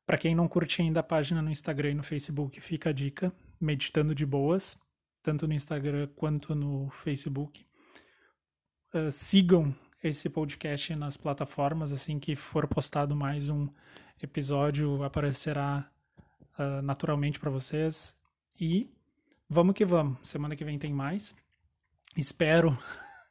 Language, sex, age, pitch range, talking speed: Portuguese, male, 20-39, 145-160 Hz, 135 wpm